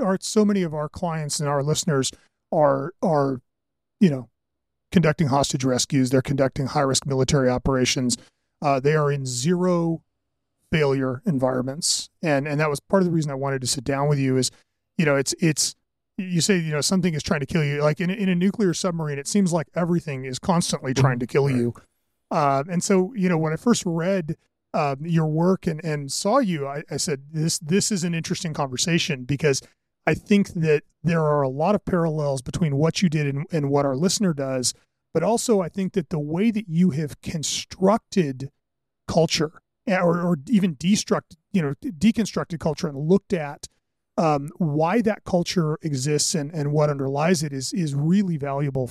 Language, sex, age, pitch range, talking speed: English, male, 30-49, 140-180 Hz, 190 wpm